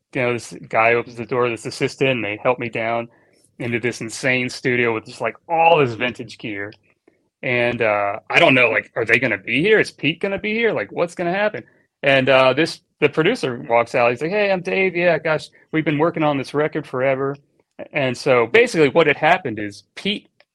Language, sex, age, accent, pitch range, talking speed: English, male, 30-49, American, 115-155 Hz, 225 wpm